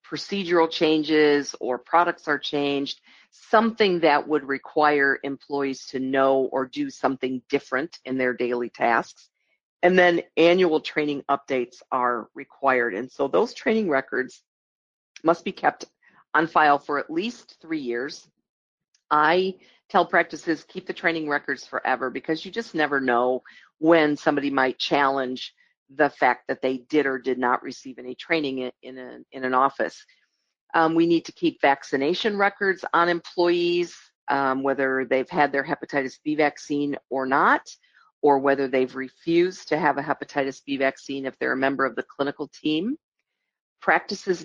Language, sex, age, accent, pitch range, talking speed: English, female, 50-69, American, 135-170 Hz, 155 wpm